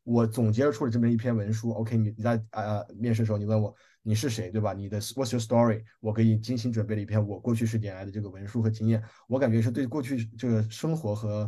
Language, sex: Chinese, male